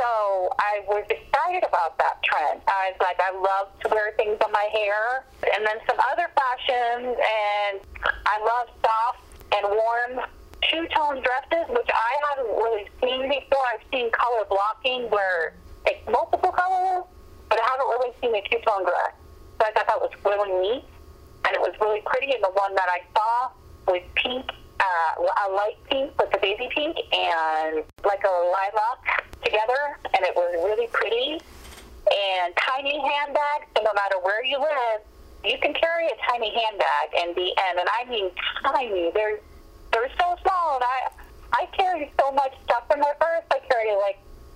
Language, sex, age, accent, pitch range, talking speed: English, female, 30-49, American, 200-290 Hz, 175 wpm